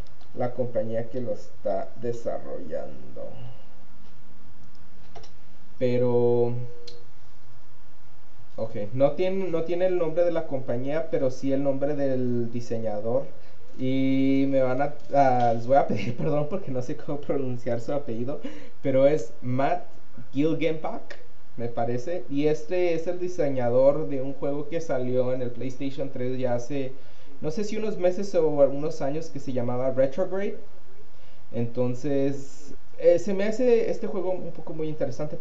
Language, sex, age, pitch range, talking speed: English, male, 20-39, 120-150 Hz, 140 wpm